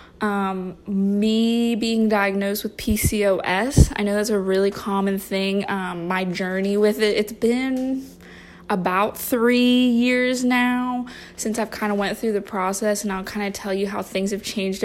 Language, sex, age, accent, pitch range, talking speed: English, female, 20-39, American, 190-225 Hz, 170 wpm